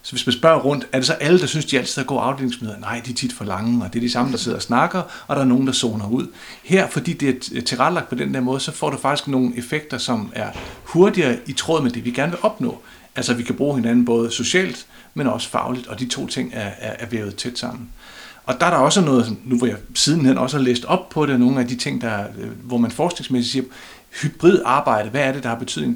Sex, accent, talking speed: male, native, 270 wpm